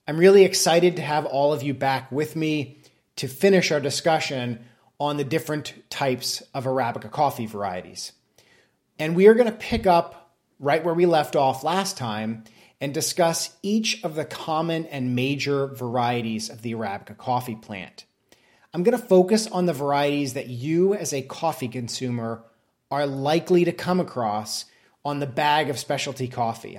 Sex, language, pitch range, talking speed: male, English, 125-160 Hz, 170 wpm